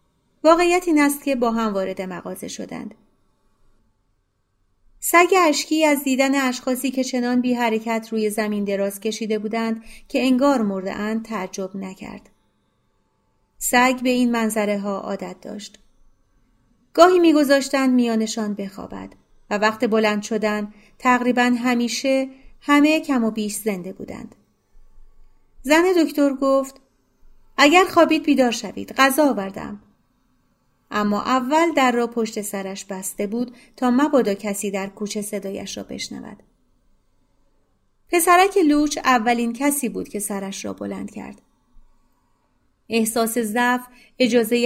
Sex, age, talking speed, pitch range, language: female, 40-59, 120 wpm, 195-260 Hz, Persian